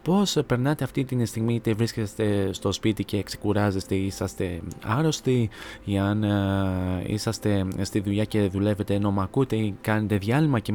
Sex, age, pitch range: male, 20-39, 105-130 Hz